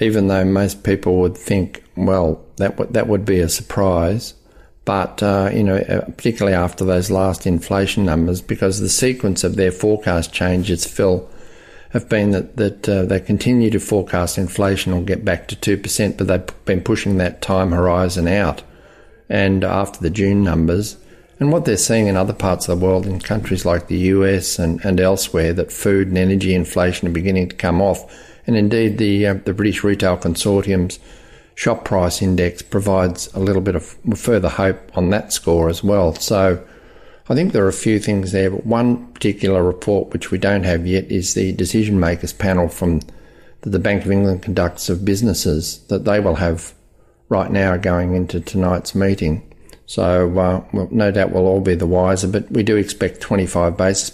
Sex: male